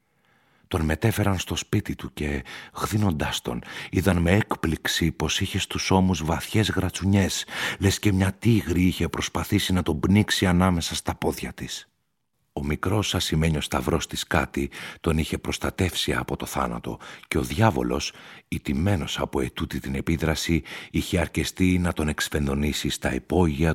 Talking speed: 145 wpm